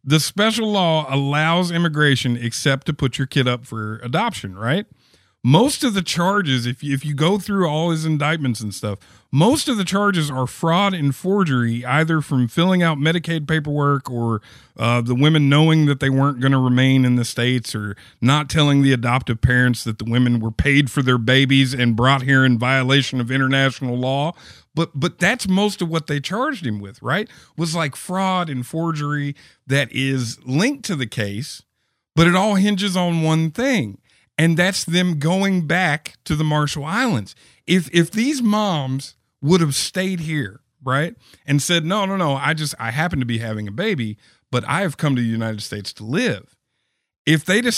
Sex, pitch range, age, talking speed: male, 125-175 Hz, 50-69, 190 wpm